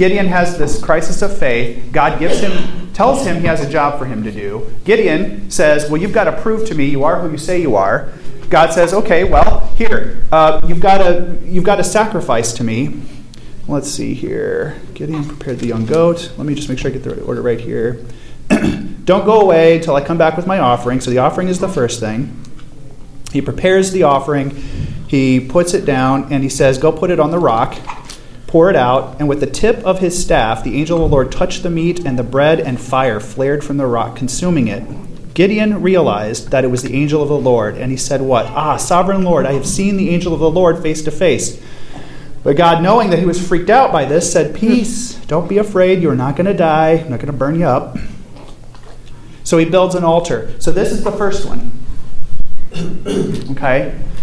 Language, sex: English, male